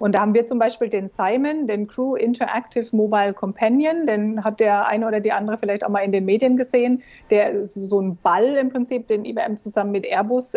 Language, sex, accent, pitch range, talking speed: German, female, German, 200-235 Hz, 215 wpm